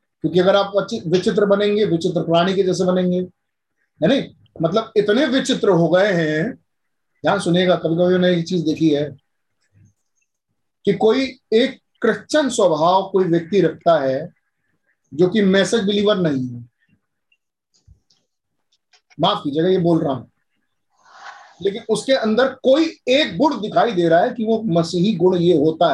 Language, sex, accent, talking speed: Hindi, male, native, 140 wpm